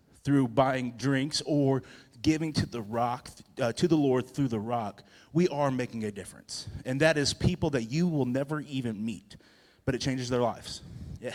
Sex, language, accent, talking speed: male, English, American, 190 wpm